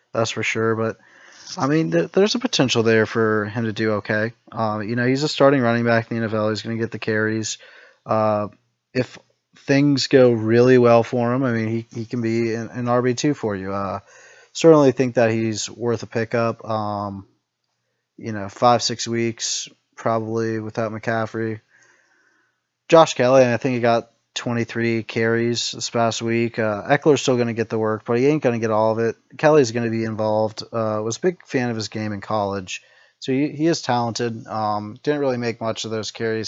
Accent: American